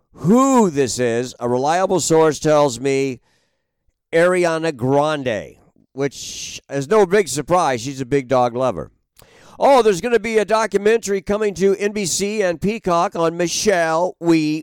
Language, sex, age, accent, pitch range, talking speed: English, male, 50-69, American, 145-195 Hz, 145 wpm